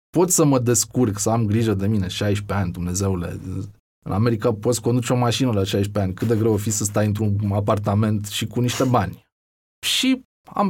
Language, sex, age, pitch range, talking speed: Romanian, male, 20-39, 105-145 Hz, 200 wpm